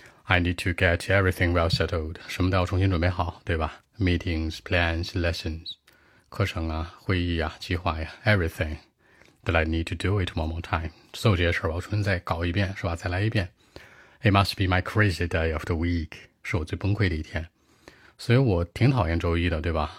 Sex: male